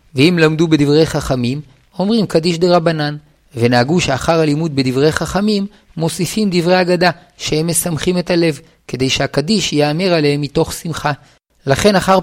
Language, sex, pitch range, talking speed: Hebrew, male, 145-180 Hz, 135 wpm